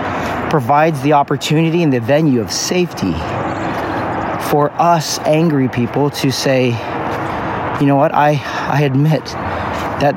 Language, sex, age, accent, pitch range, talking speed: English, male, 40-59, American, 115-145 Hz, 125 wpm